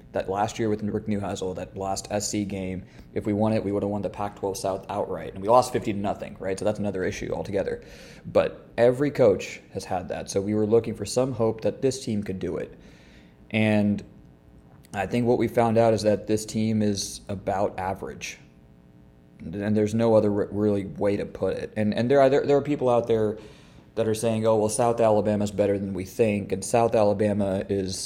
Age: 20-39